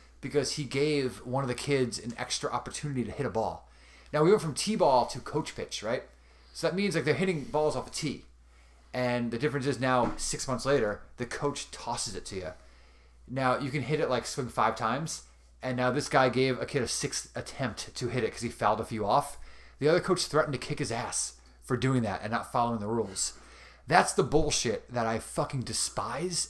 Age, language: 30-49, English